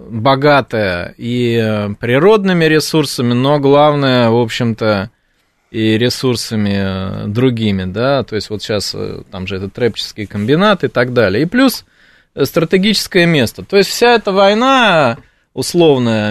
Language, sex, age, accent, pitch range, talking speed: Russian, male, 20-39, native, 110-145 Hz, 125 wpm